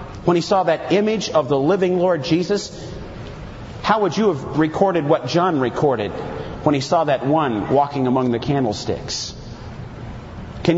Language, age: English, 40-59